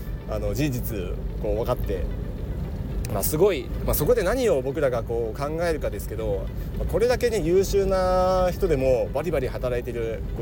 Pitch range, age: 115-185 Hz, 30-49